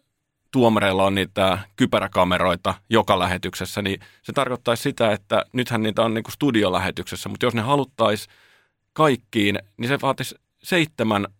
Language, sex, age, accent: Finnish, male, 30-49, native